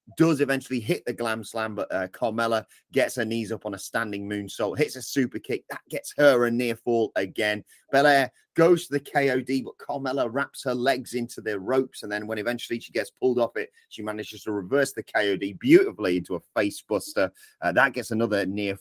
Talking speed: 210 wpm